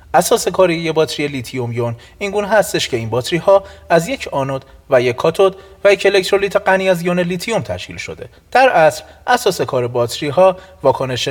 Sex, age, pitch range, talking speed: male, 30-49, 115-180 Hz, 180 wpm